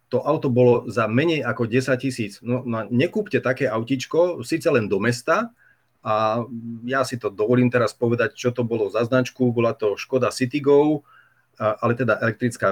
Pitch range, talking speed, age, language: 115-135 Hz, 170 wpm, 30-49, Slovak